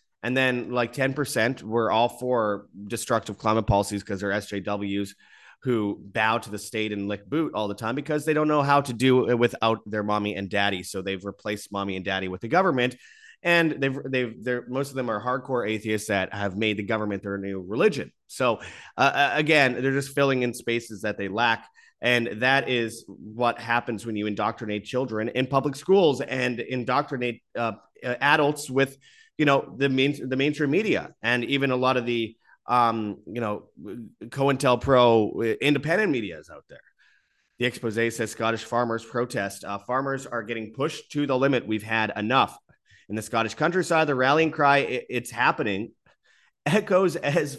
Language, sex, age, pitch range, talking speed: English, male, 30-49, 105-135 Hz, 180 wpm